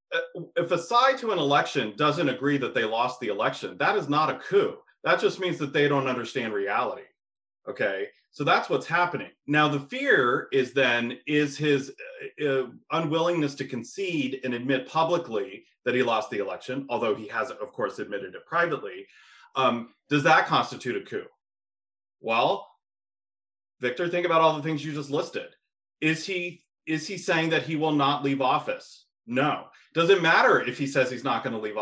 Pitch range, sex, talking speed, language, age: 140-215 Hz, male, 180 wpm, English, 30-49